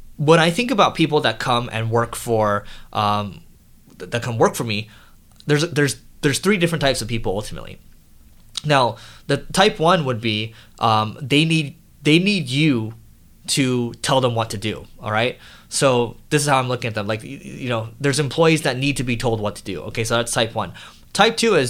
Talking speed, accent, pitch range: 205 wpm, American, 115-150 Hz